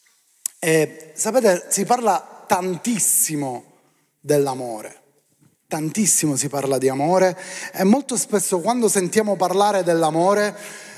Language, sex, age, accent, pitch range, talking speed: Italian, male, 30-49, native, 175-235 Hz, 100 wpm